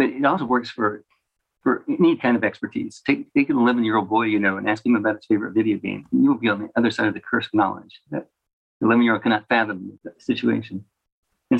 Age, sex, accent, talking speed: 50-69, male, American, 220 wpm